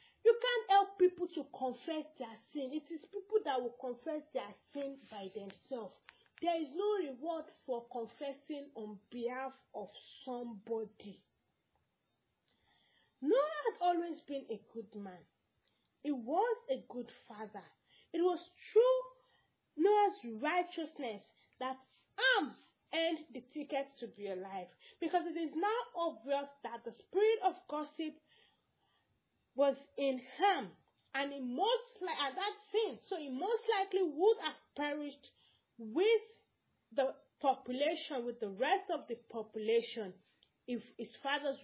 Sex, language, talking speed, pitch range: female, English, 130 wpm, 235-360 Hz